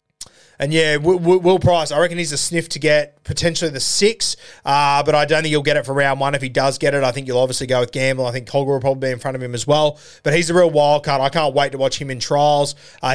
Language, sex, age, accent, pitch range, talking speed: English, male, 20-39, Australian, 130-155 Hz, 295 wpm